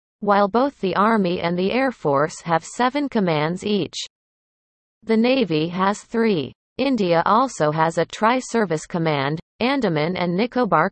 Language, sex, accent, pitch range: English, female, American, 160-230 Hz